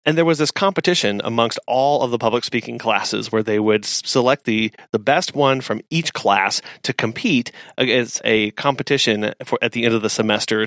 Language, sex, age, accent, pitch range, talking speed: English, male, 30-49, American, 110-145 Hz, 195 wpm